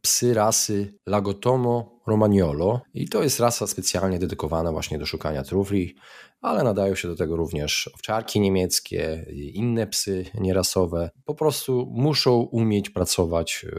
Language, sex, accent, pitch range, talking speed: Polish, male, native, 85-110 Hz, 130 wpm